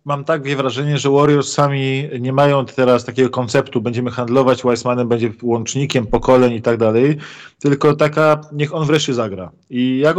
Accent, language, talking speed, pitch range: native, Polish, 165 wpm, 125-145 Hz